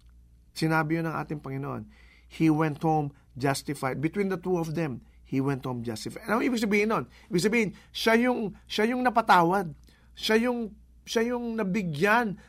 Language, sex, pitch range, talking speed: English, male, 120-180 Hz, 145 wpm